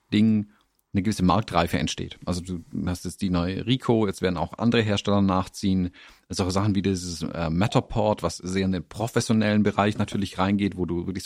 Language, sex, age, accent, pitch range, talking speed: German, male, 40-59, German, 90-115 Hz, 190 wpm